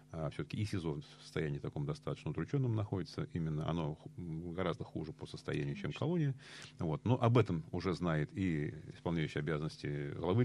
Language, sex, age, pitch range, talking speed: Russian, male, 40-59, 80-125 Hz, 165 wpm